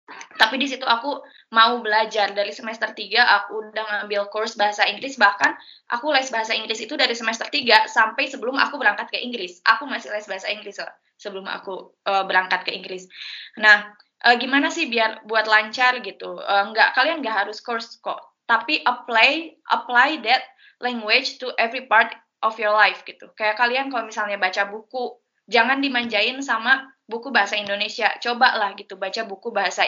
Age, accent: 20-39, native